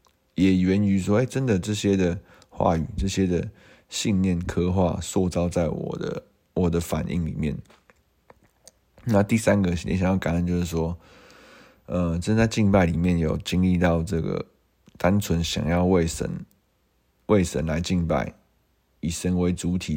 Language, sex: Chinese, male